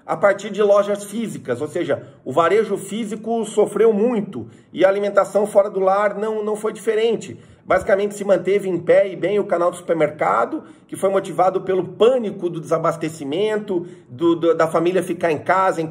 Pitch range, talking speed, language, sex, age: 175-215 Hz, 175 wpm, Portuguese, male, 40-59